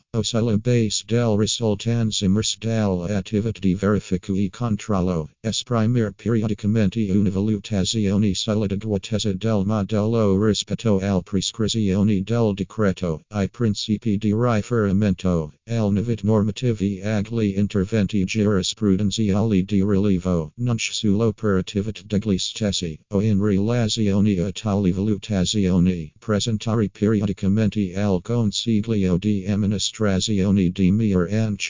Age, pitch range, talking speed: 50-69, 95-110 Hz, 100 wpm